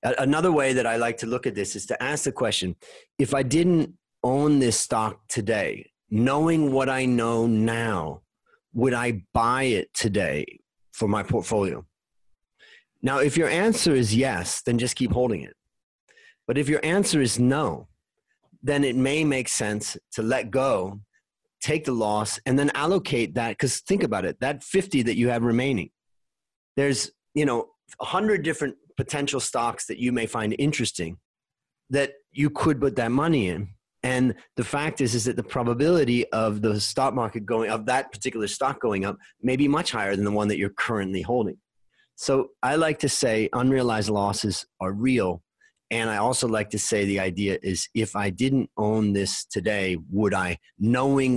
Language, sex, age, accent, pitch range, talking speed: English, male, 30-49, American, 105-140 Hz, 180 wpm